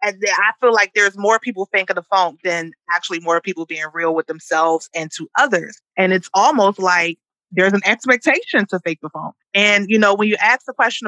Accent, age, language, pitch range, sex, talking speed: American, 30-49, English, 180-245 Hz, female, 220 wpm